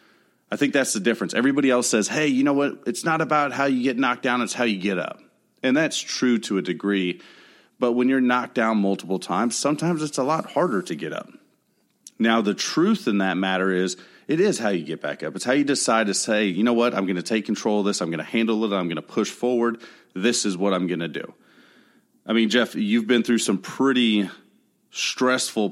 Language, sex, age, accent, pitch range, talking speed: English, male, 30-49, American, 95-125 Hz, 240 wpm